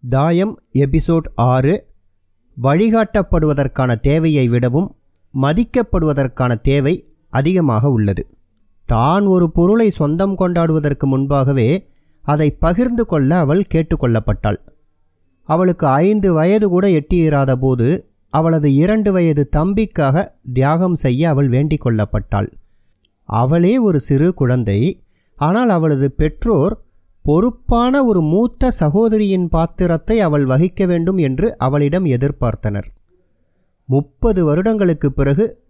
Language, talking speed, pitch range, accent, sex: Tamil, 90 wpm, 125-180 Hz, native, male